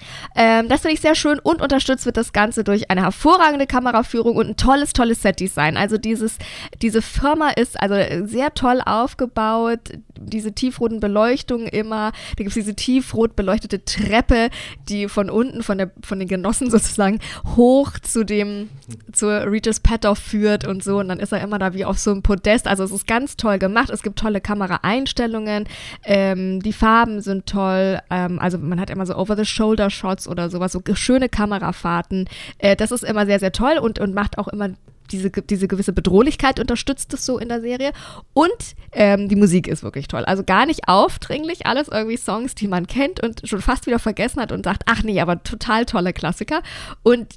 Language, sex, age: German, female, 20-39